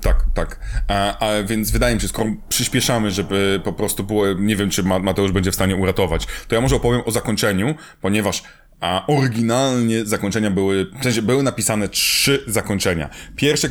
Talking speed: 170 wpm